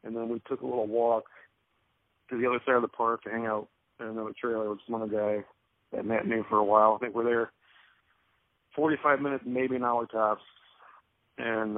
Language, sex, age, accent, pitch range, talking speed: English, male, 40-59, American, 110-125 Hz, 215 wpm